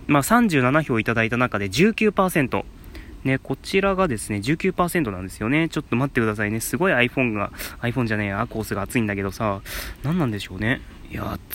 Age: 20-39